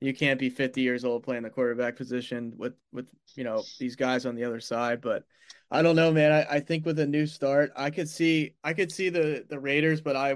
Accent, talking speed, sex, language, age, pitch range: American, 250 wpm, male, English, 20-39, 130-155 Hz